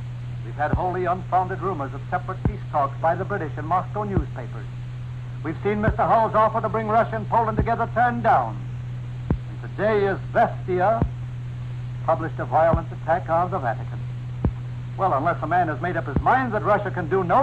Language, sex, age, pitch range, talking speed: English, male, 60-79, 120-125 Hz, 185 wpm